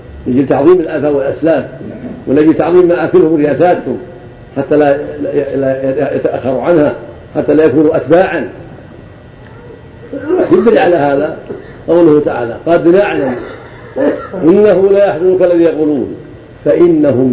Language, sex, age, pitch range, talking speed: Arabic, male, 50-69, 125-170 Hz, 105 wpm